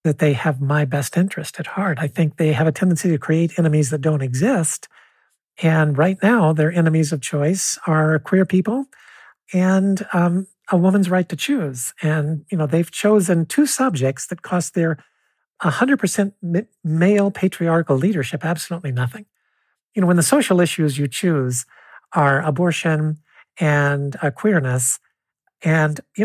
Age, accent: 50-69, American